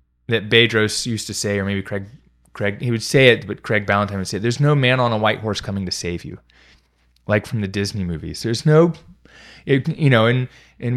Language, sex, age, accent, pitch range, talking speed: English, male, 20-39, American, 100-130 Hz, 220 wpm